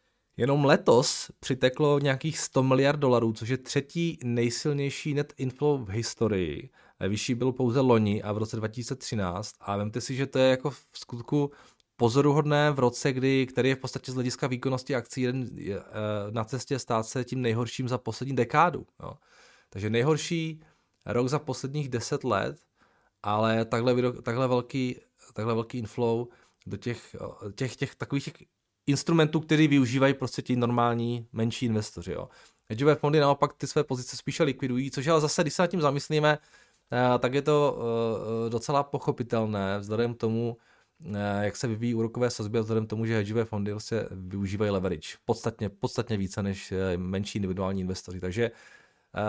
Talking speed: 150 wpm